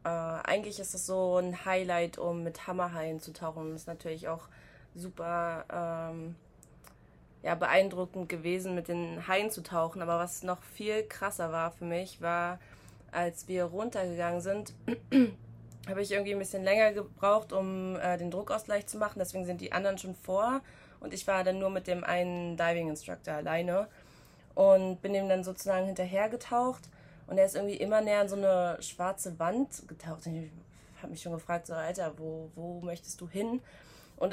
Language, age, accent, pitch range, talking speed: German, 20-39, German, 170-195 Hz, 180 wpm